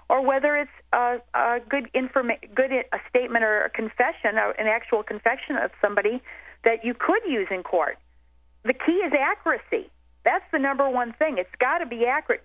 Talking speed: 190 wpm